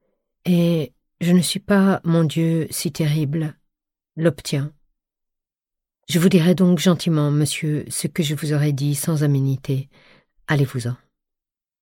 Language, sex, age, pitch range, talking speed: French, female, 50-69, 150-180 Hz, 125 wpm